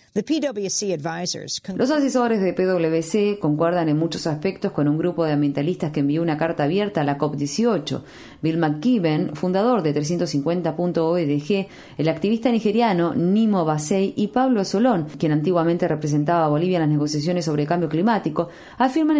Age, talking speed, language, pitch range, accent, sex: 30-49, 145 wpm, Spanish, 150-200 Hz, Argentinian, female